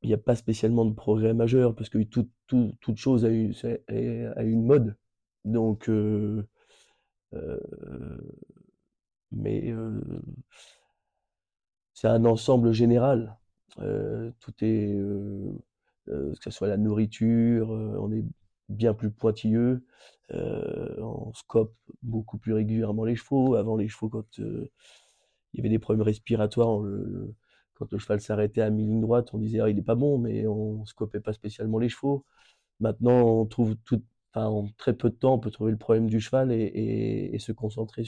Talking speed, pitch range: 165 wpm, 110-120 Hz